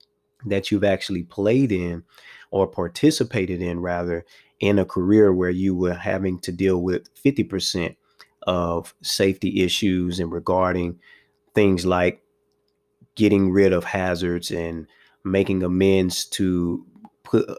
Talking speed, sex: 125 wpm, male